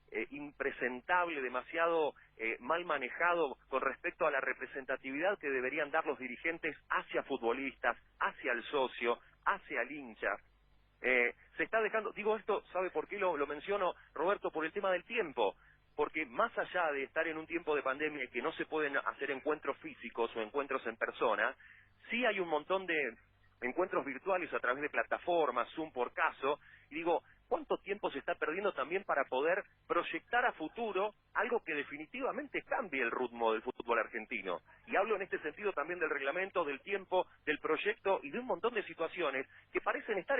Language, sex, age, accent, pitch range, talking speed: Spanish, male, 40-59, Argentinian, 140-200 Hz, 180 wpm